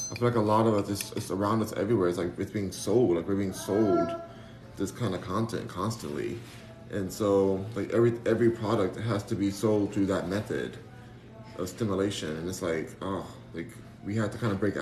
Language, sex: English, male